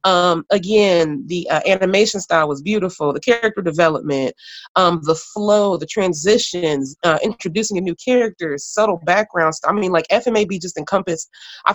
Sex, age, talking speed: female, 30-49, 155 wpm